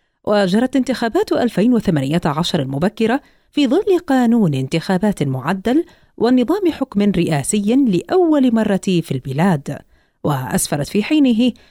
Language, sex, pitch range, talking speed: Arabic, female, 160-265 Hz, 95 wpm